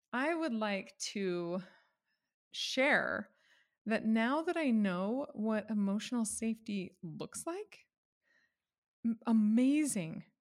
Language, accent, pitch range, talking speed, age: English, American, 195-255 Hz, 90 wpm, 20-39